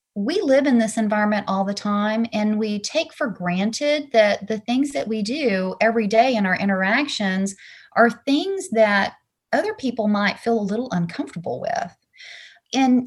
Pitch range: 195-240 Hz